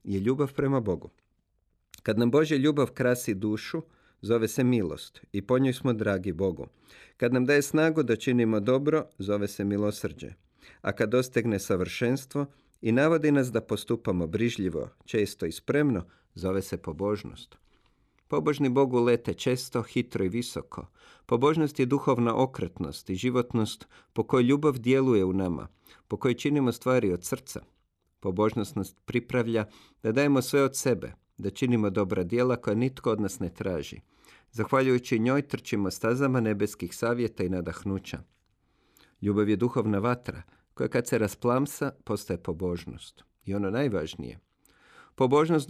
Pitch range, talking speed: 100-130 Hz, 145 wpm